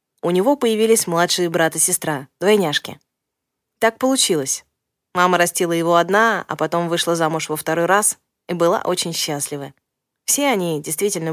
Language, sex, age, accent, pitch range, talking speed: Russian, female, 20-39, native, 160-190 Hz, 150 wpm